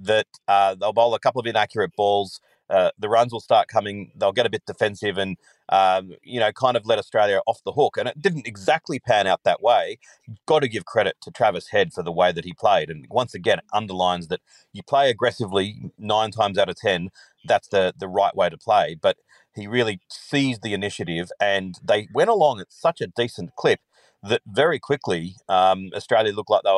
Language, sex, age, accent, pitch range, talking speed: English, male, 40-59, Australian, 100-125 Hz, 215 wpm